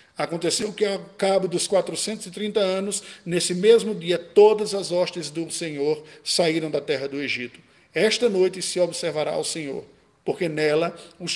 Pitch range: 180-245 Hz